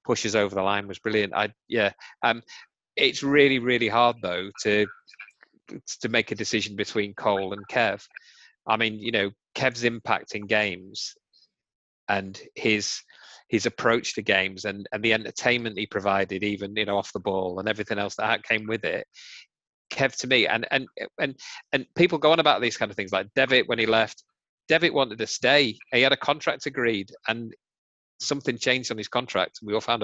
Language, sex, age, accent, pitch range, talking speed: English, male, 30-49, British, 105-130 Hz, 190 wpm